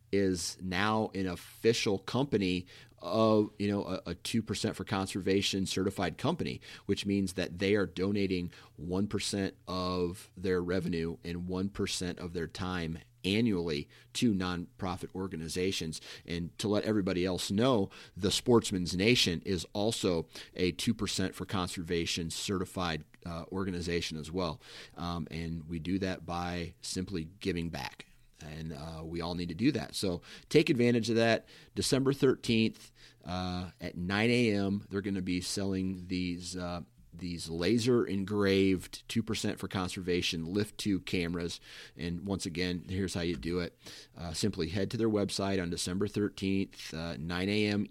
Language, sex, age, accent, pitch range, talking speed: English, male, 40-59, American, 90-105 Hz, 150 wpm